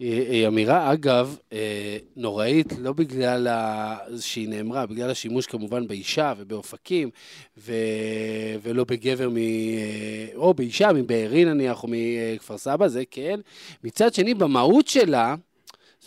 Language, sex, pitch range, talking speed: Hebrew, male, 125-205 Hz, 115 wpm